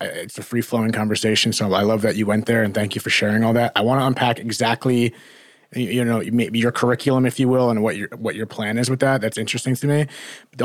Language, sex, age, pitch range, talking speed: English, male, 30-49, 110-130 Hz, 260 wpm